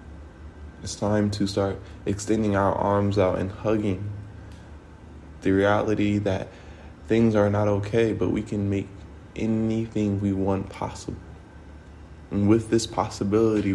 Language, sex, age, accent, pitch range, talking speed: English, male, 20-39, American, 80-100 Hz, 125 wpm